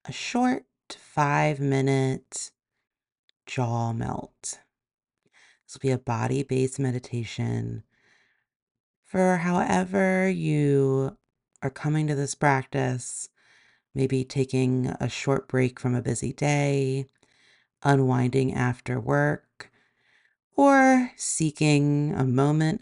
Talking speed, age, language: 90 wpm, 40-59, English